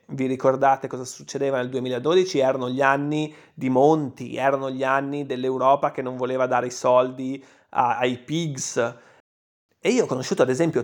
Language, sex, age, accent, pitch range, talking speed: Italian, male, 30-49, native, 130-170 Hz, 160 wpm